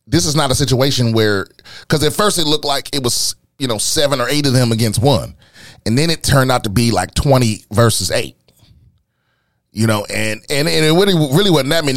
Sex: male